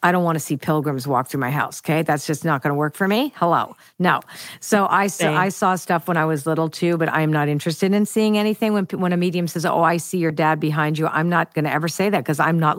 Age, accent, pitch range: 50-69, American, 155-200 Hz